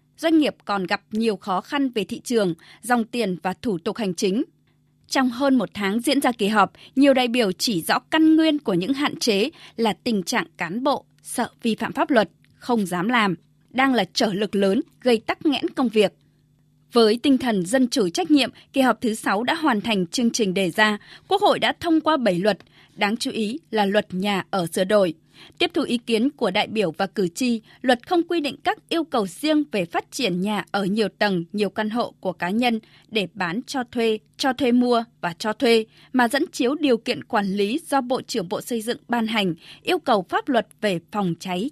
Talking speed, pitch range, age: 225 wpm, 195-260 Hz, 20-39